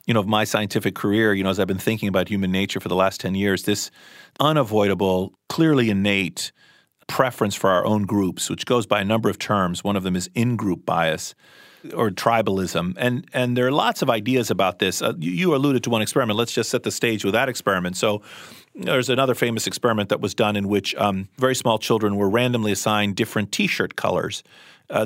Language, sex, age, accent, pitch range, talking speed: English, male, 40-59, American, 100-125 Hz, 215 wpm